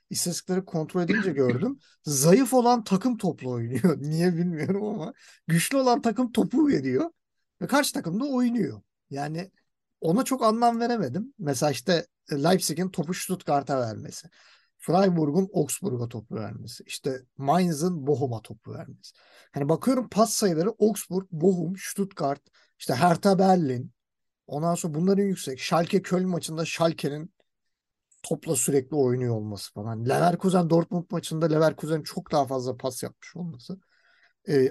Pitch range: 150-210 Hz